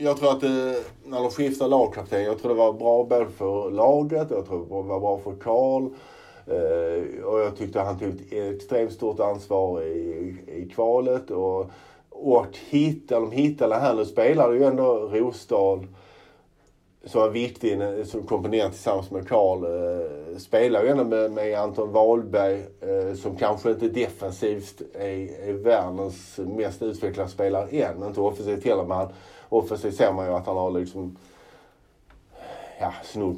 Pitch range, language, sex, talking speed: 95-115 Hz, Swedish, male, 160 wpm